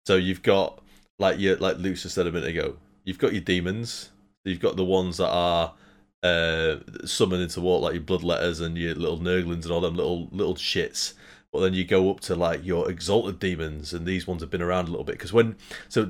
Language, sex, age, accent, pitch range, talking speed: English, male, 30-49, British, 85-95 Hz, 225 wpm